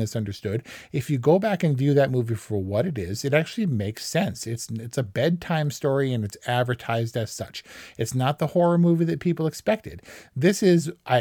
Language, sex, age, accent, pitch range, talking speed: English, male, 40-59, American, 115-150 Hz, 205 wpm